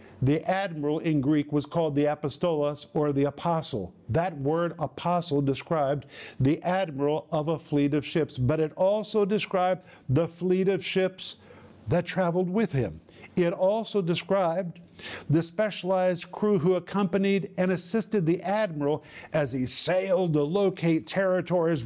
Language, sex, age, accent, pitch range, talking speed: English, male, 50-69, American, 150-190 Hz, 145 wpm